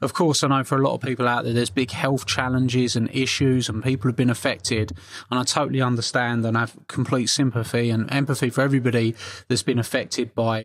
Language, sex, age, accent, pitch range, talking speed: English, male, 20-39, British, 120-135 Hz, 215 wpm